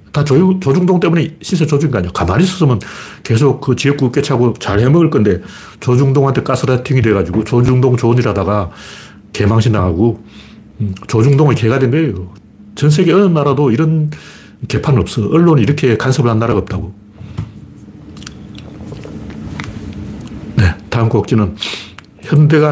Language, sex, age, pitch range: Korean, male, 40-59, 105-145 Hz